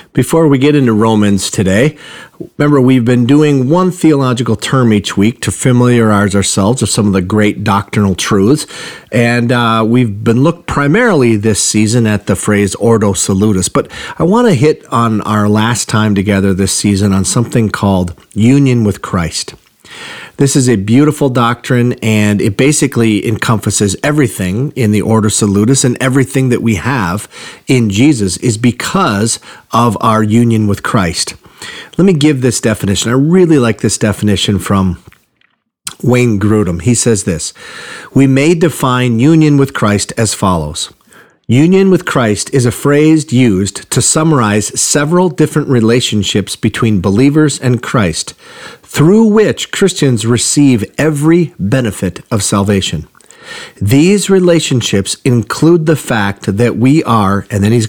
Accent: American